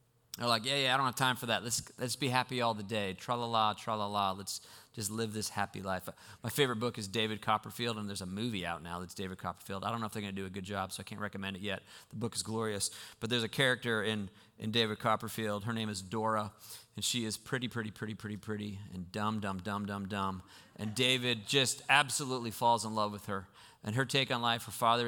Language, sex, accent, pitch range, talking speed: English, male, American, 100-120 Hz, 245 wpm